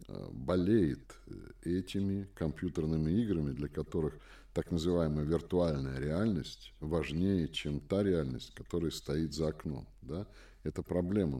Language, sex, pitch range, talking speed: Russian, male, 80-100 Hz, 105 wpm